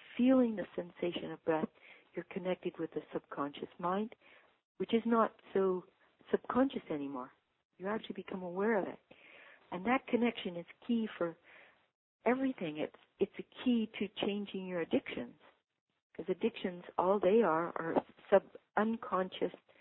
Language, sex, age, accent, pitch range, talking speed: English, female, 50-69, American, 165-220 Hz, 140 wpm